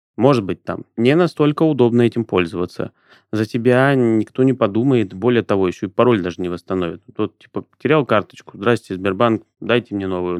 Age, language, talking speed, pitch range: 30-49, Russian, 175 wpm, 95-120 Hz